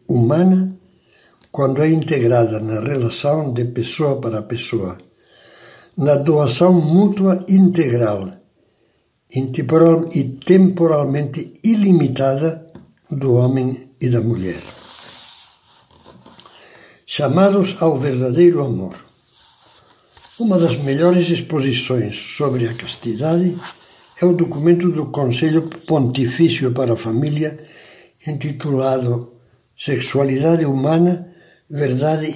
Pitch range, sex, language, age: 120-165 Hz, male, Portuguese, 60-79